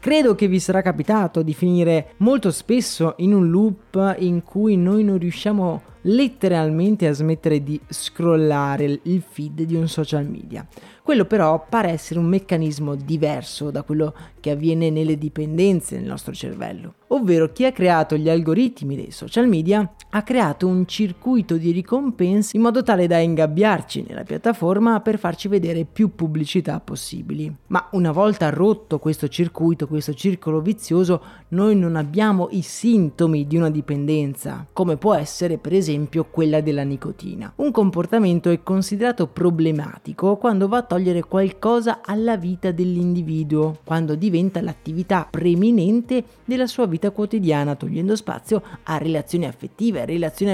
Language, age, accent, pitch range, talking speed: Italian, 30-49, native, 160-210 Hz, 145 wpm